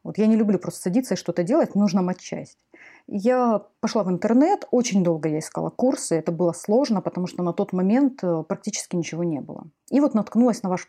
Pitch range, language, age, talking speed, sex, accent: 195-255 Hz, Russian, 30-49, 210 wpm, female, native